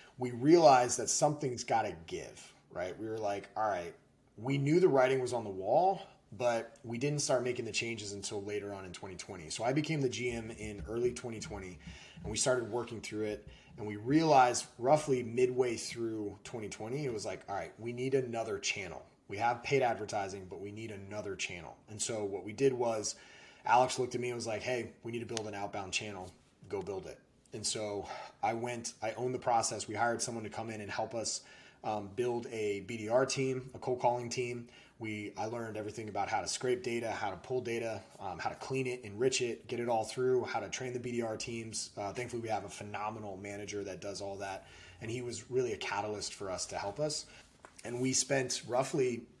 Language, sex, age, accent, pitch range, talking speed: English, male, 30-49, American, 105-125 Hz, 215 wpm